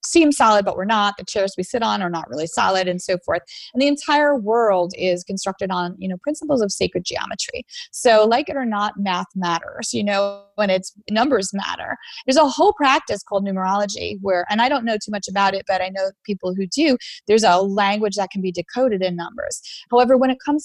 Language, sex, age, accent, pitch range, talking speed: English, female, 30-49, American, 190-245 Hz, 235 wpm